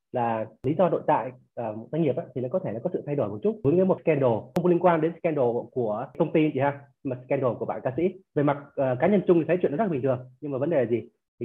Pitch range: 125-165 Hz